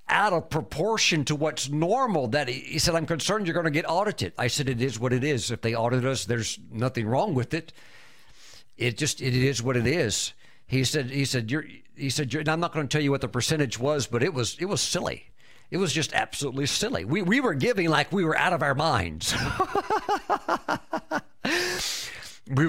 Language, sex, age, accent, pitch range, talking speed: English, male, 50-69, American, 125-165 Hz, 210 wpm